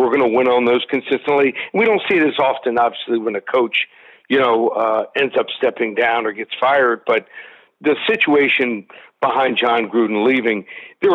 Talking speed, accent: 185 wpm, American